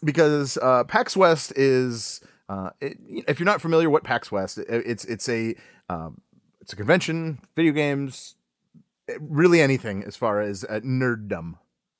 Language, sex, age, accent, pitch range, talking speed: English, male, 30-49, American, 105-140 Hz, 155 wpm